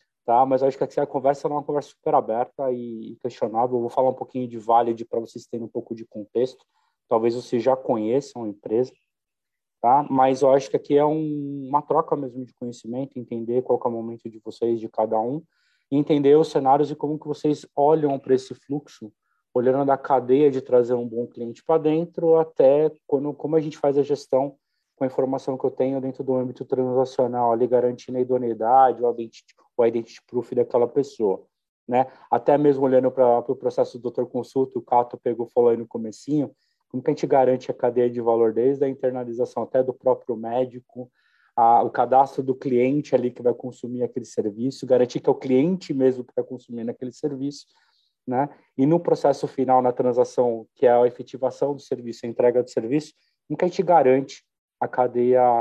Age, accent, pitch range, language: 20-39, Brazilian, 120-140 Hz, Portuguese